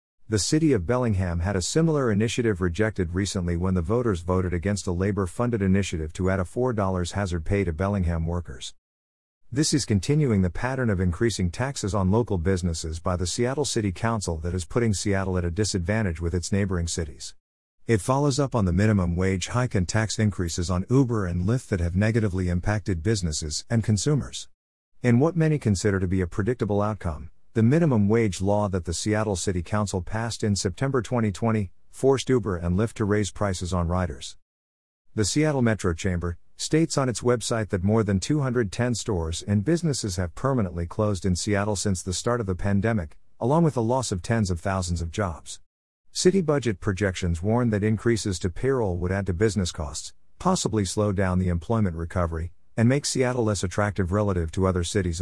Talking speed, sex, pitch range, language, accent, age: 185 wpm, male, 90-115 Hz, English, American, 50-69